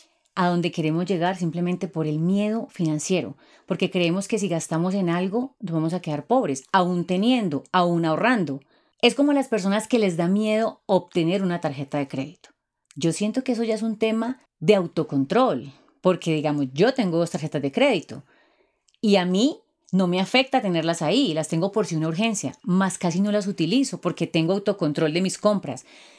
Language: Spanish